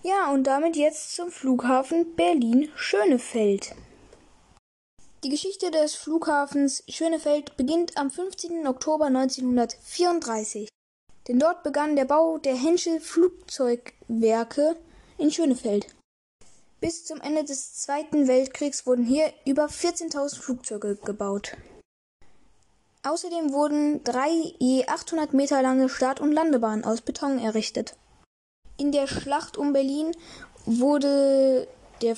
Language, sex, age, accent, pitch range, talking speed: German, female, 10-29, German, 250-300 Hz, 110 wpm